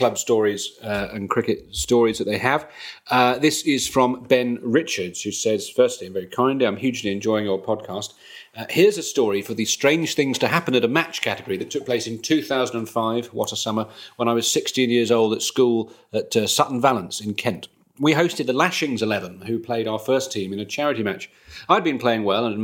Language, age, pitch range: English, 40-59, 105-130 Hz